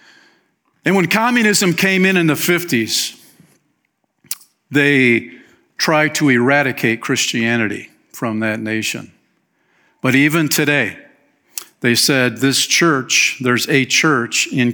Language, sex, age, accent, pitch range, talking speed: English, male, 50-69, American, 135-200 Hz, 110 wpm